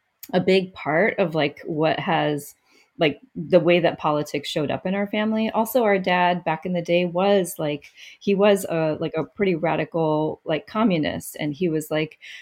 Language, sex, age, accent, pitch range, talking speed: English, female, 30-49, American, 150-185 Hz, 190 wpm